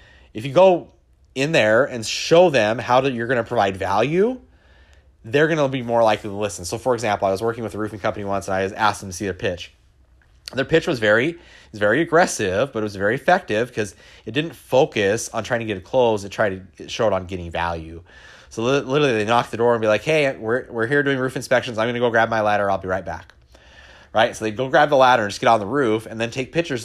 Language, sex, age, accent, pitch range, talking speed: English, male, 30-49, American, 100-130 Hz, 260 wpm